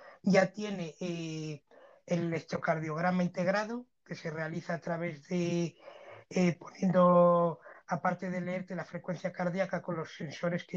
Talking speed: 135 wpm